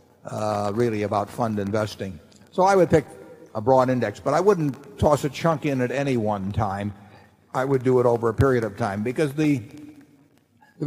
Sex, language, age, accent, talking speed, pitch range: male, English, 50-69, American, 195 wpm, 110-145 Hz